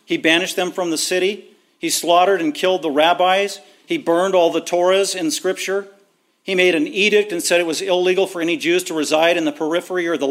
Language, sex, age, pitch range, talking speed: English, male, 50-69, 175-270 Hz, 220 wpm